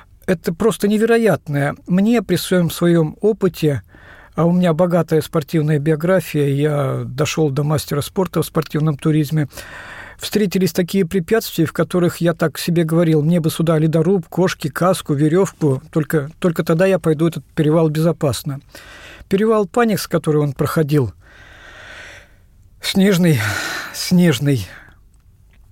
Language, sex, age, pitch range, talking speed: Russian, male, 50-69, 145-185 Hz, 125 wpm